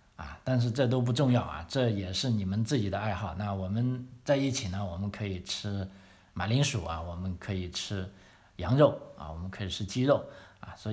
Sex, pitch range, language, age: male, 95-115 Hz, Chinese, 50-69